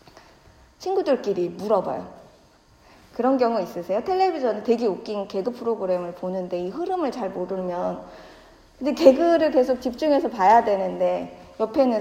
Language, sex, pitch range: Korean, female, 200-280 Hz